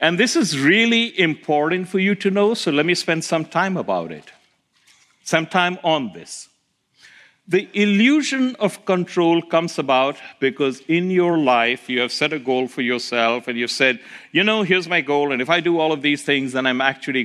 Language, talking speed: English, 200 wpm